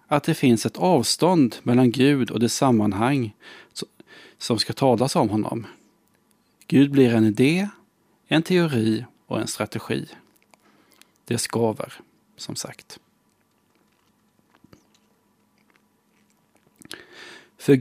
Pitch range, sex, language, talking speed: 110-140 Hz, male, Swedish, 100 wpm